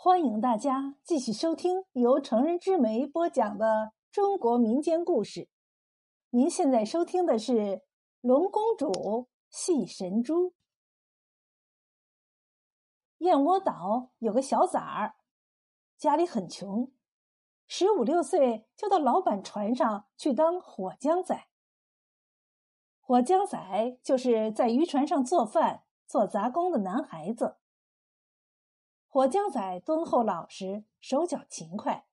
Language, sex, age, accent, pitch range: Chinese, female, 50-69, native, 225-335 Hz